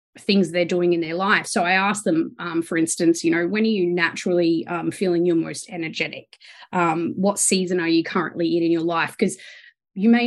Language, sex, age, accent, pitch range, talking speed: English, female, 20-39, Australian, 170-200 Hz, 215 wpm